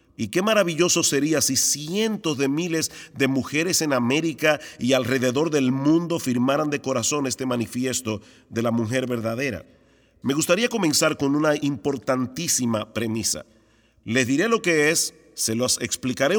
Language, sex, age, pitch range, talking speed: Spanish, male, 40-59, 120-155 Hz, 145 wpm